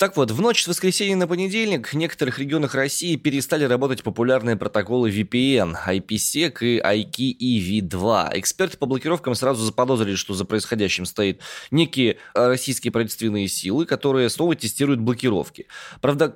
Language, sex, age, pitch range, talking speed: Russian, male, 20-39, 110-160 Hz, 140 wpm